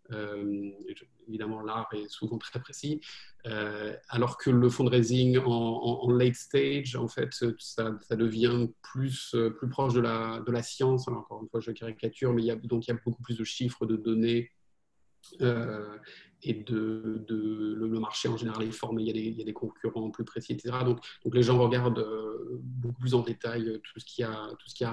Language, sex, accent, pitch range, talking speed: French, male, French, 110-125 Hz, 220 wpm